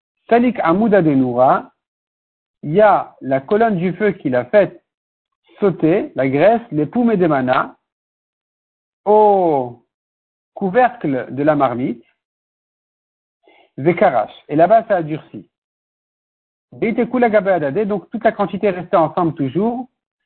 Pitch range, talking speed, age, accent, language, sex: 155-215 Hz, 120 wpm, 60-79, French, French, male